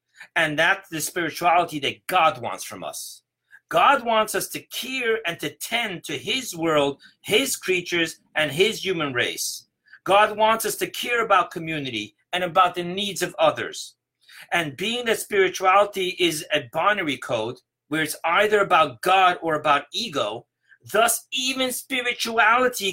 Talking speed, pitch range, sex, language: 150 wpm, 155-220 Hz, male, English